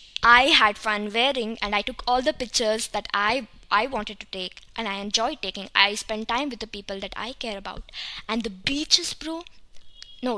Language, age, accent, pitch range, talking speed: English, 20-39, Indian, 210-255 Hz, 200 wpm